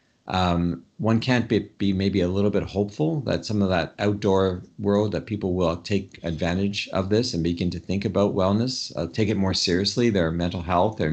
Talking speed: 205 wpm